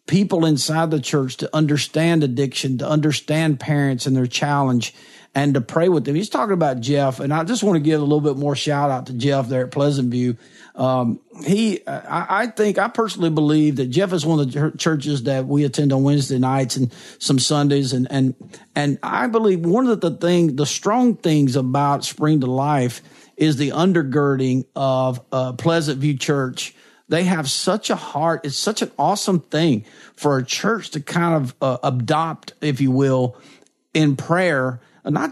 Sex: male